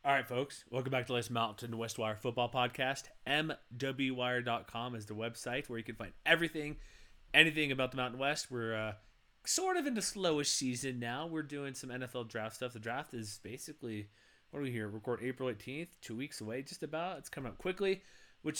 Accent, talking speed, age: American, 200 wpm, 30-49